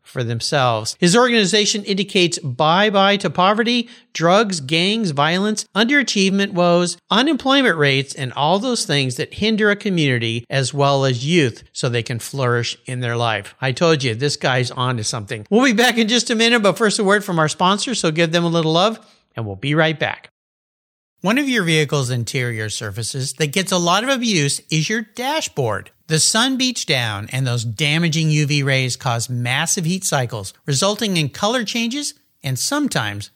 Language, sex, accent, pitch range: English, male, American, 130-205 Hz